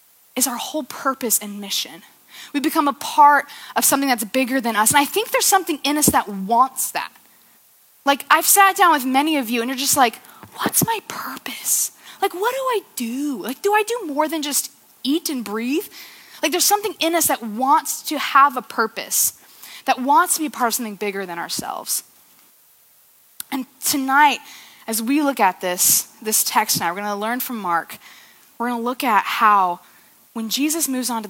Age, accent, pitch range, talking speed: 20-39, American, 230-305 Hz, 200 wpm